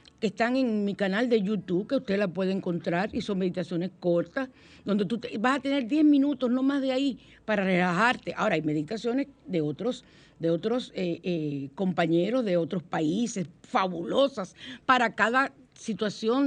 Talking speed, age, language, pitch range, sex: 165 wpm, 50-69, Spanish, 175-255 Hz, female